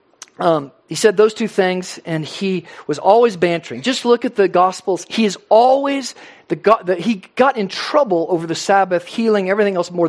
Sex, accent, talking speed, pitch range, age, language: male, American, 195 wpm, 155-220 Hz, 50-69, English